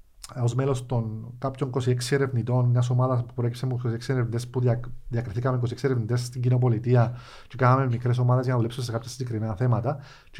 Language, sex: Greek, male